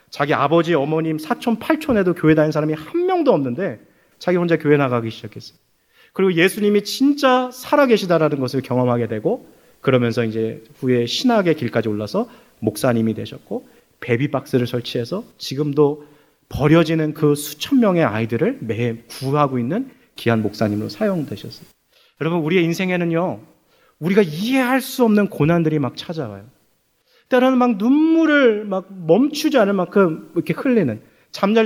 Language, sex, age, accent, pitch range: Korean, male, 30-49, native, 135-210 Hz